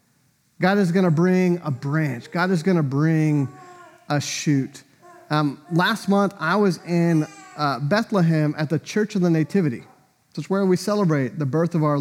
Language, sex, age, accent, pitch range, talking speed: English, male, 30-49, American, 155-200 Hz, 180 wpm